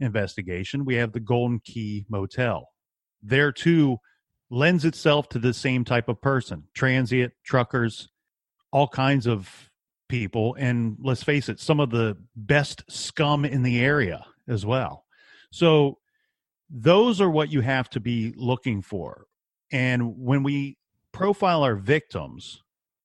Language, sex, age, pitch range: English, male, 40-59, 115-150 Hz